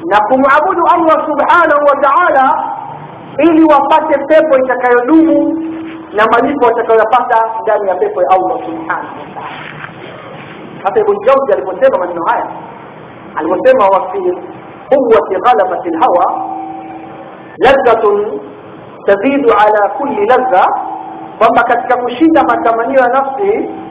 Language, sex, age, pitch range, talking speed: Swahili, male, 50-69, 230-320 Hz, 115 wpm